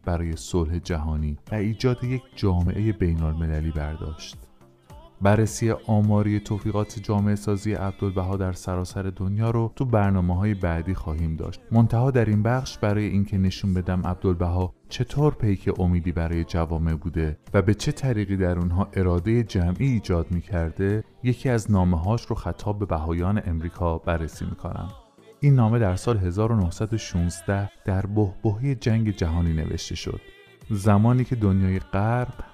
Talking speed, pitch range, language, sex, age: 140 wpm, 85-110 Hz, Persian, male, 30-49